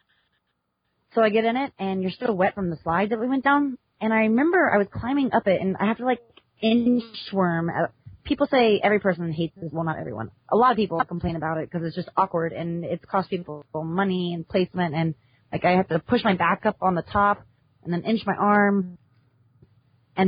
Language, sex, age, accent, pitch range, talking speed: English, female, 30-49, American, 170-225 Hz, 220 wpm